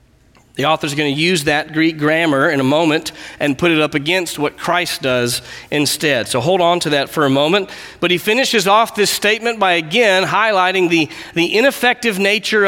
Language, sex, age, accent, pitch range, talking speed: English, male, 40-59, American, 155-210 Hz, 190 wpm